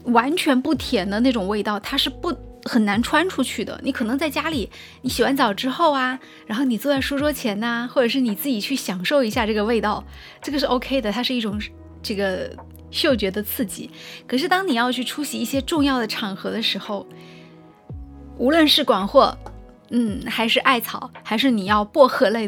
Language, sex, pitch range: Chinese, female, 210-275 Hz